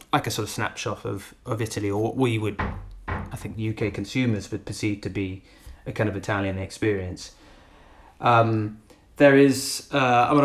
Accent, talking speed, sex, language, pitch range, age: British, 160 wpm, male, English, 110-130 Hz, 20-39